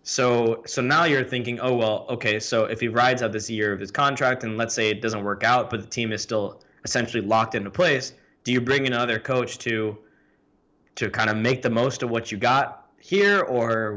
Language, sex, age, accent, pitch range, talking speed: English, male, 20-39, American, 110-135 Hz, 225 wpm